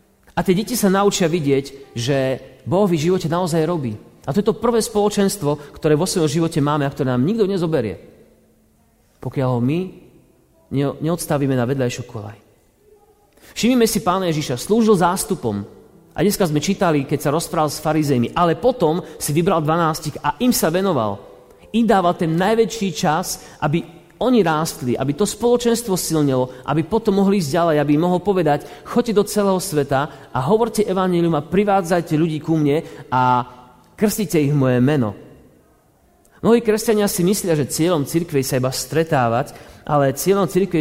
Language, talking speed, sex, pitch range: Slovak, 160 wpm, male, 135-190 Hz